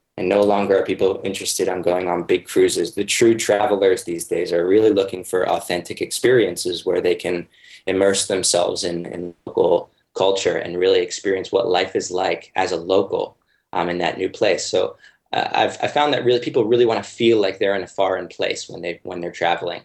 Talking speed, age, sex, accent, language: 205 wpm, 20-39, male, American, English